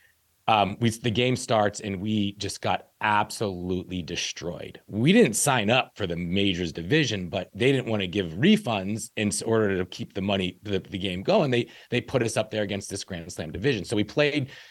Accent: American